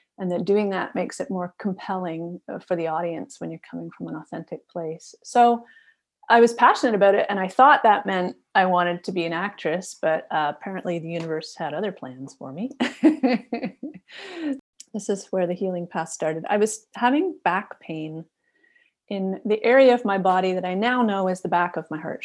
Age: 30-49